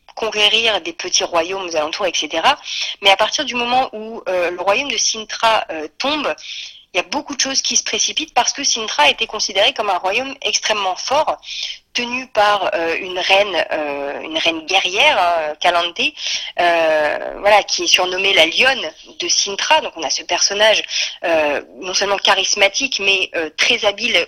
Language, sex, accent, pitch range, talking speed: French, female, French, 185-260 Hz, 180 wpm